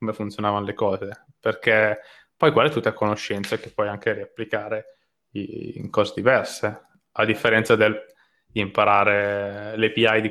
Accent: native